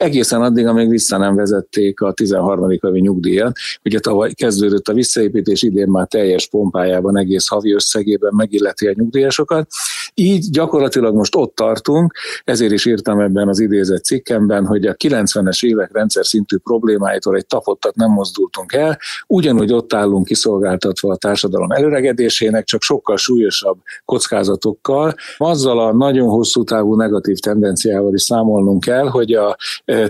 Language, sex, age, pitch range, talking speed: Hungarian, male, 50-69, 100-120 Hz, 140 wpm